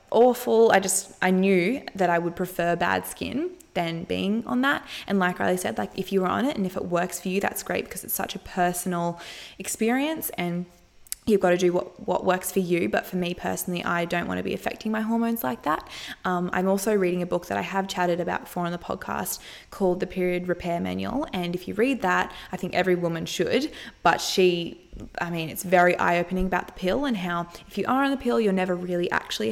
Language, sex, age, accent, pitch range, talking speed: English, female, 20-39, Australian, 175-210 Hz, 235 wpm